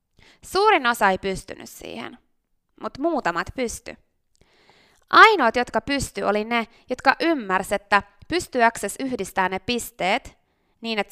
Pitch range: 205-300 Hz